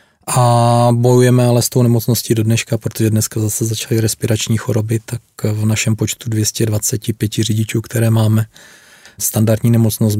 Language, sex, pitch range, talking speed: Czech, male, 110-120 Hz, 140 wpm